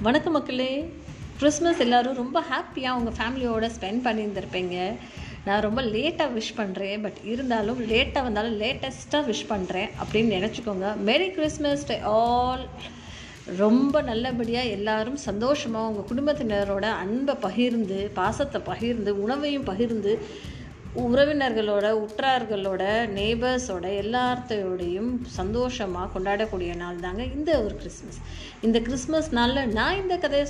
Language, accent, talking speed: Tamil, native, 110 wpm